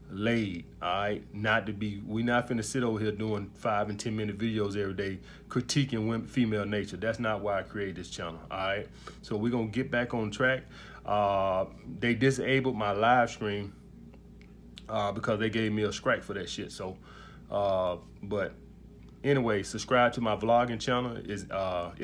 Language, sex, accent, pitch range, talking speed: English, male, American, 100-120 Hz, 175 wpm